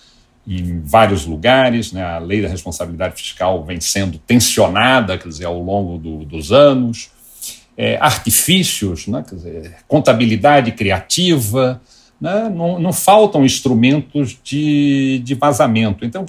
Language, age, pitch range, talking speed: Portuguese, 60-79, 100-140 Hz, 135 wpm